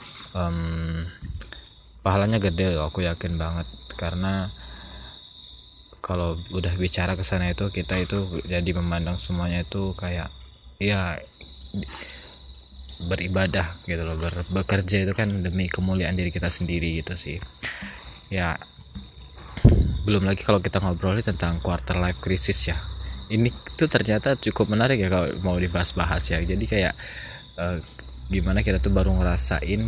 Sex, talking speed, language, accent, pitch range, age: male, 135 wpm, Indonesian, native, 85-100 Hz, 20-39